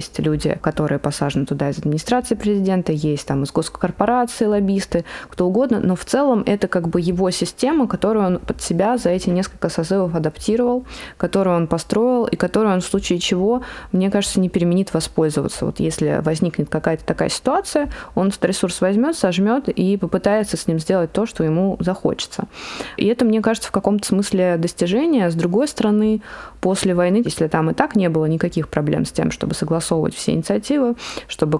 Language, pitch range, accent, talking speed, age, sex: Russian, 165-210 Hz, native, 175 wpm, 20-39, female